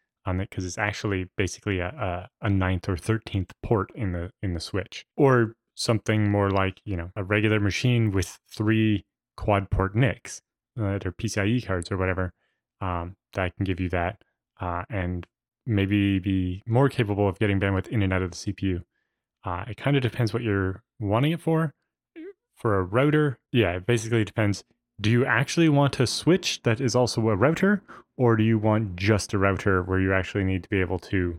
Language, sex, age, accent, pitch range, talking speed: English, male, 20-39, American, 95-115 Hz, 195 wpm